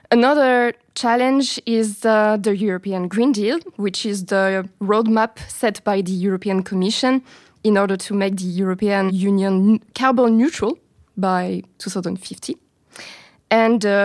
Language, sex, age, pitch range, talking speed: French, female, 20-39, 195-235 Hz, 130 wpm